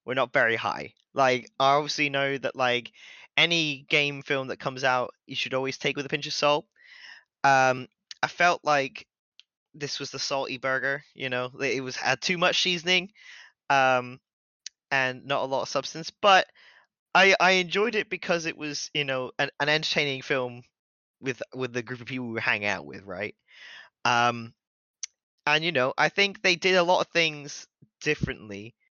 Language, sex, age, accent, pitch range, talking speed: English, male, 20-39, British, 125-150 Hz, 180 wpm